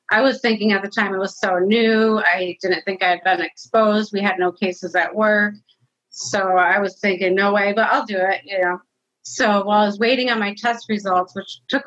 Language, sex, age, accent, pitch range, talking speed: English, female, 30-49, American, 185-220 Hz, 235 wpm